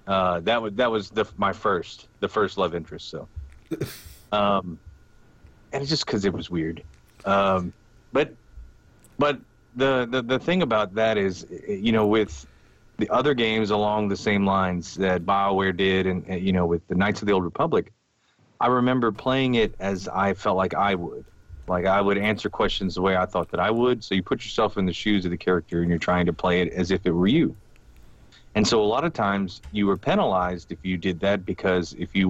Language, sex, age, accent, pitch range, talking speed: English, male, 30-49, American, 90-105 Hz, 215 wpm